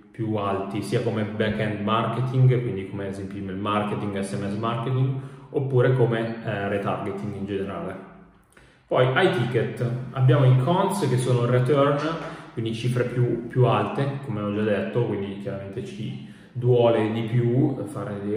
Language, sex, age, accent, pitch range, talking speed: Italian, male, 30-49, native, 110-130 Hz, 150 wpm